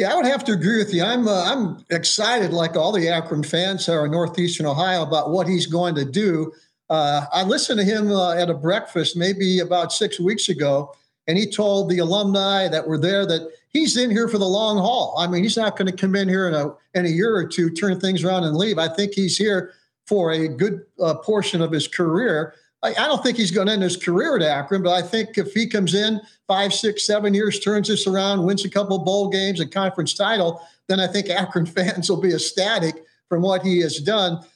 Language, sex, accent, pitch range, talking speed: English, male, American, 170-205 Hz, 235 wpm